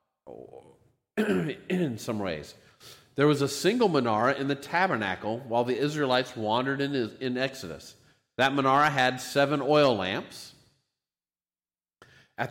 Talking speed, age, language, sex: 115 wpm, 50-69, English, male